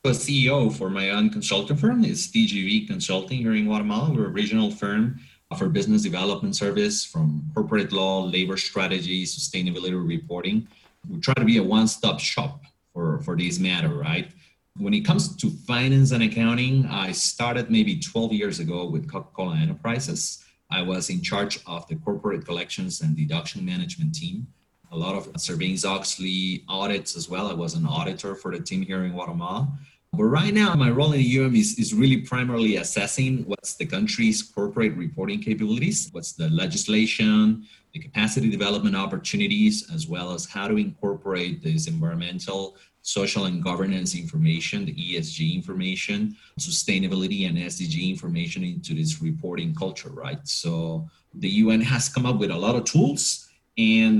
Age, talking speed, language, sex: 30-49, 165 wpm, English, male